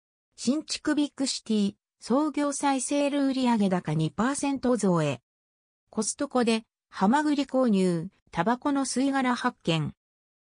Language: Japanese